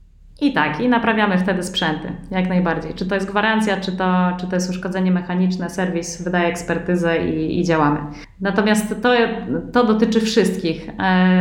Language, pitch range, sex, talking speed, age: Polish, 185-205 Hz, female, 160 wpm, 30-49